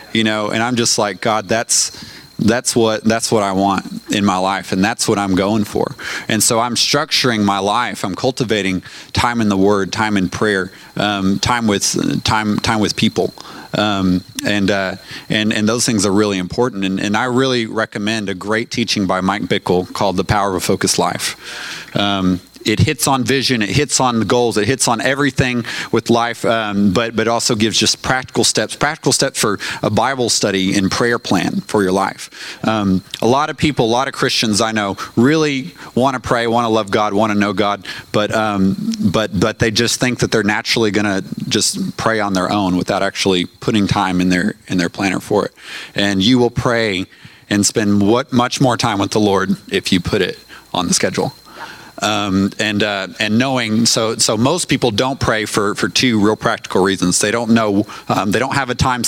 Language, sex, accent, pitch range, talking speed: English, male, American, 100-115 Hz, 210 wpm